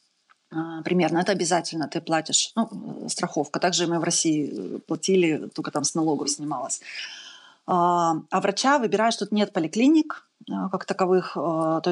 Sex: female